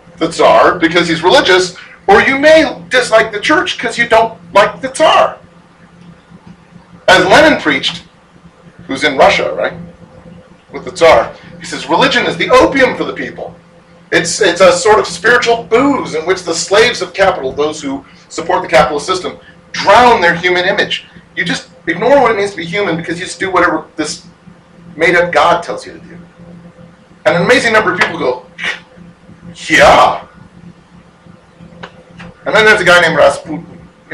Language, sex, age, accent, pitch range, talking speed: English, male, 40-59, American, 165-195 Hz, 170 wpm